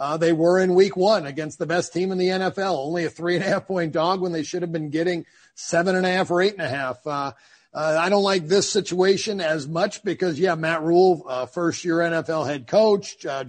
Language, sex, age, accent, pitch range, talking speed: English, male, 50-69, American, 170-220 Hz, 200 wpm